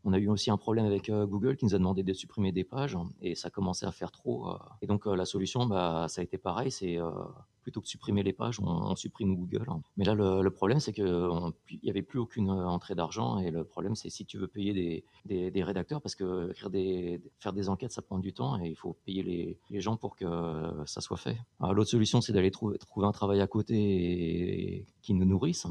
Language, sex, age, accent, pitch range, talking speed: French, male, 30-49, French, 95-110 Hz, 245 wpm